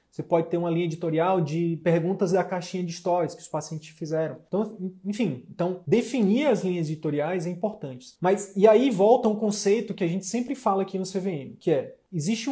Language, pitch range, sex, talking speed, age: Portuguese, 155-185 Hz, male, 200 wpm, 20-39